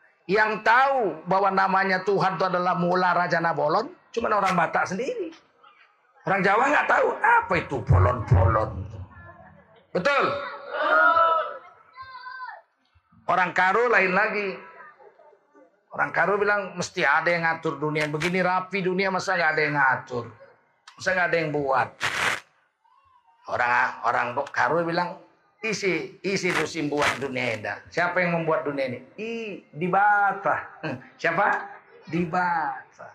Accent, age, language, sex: native, 40-59, Indonesian, male